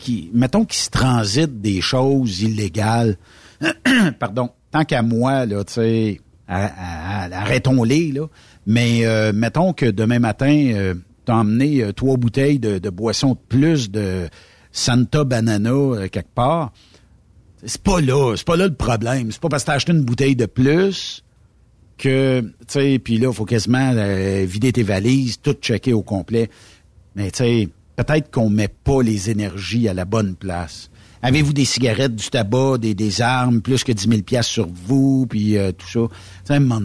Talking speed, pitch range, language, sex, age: 180 wpm, 105-130 Hz, French, male, 60-79